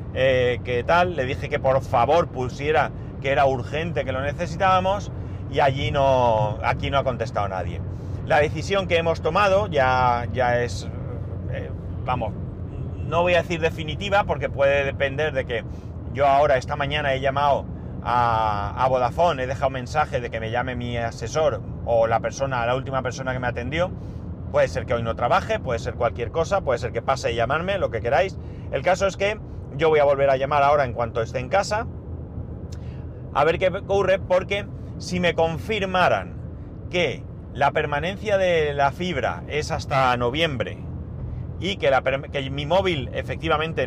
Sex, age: male, 30-49